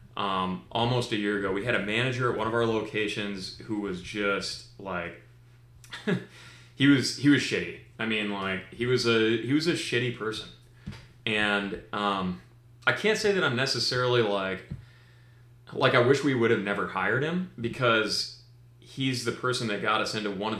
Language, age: English, 30-49